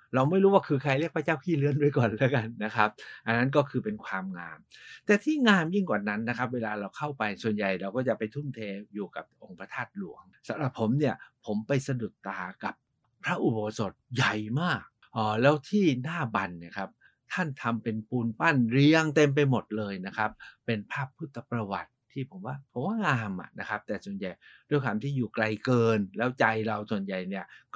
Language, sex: Thai, male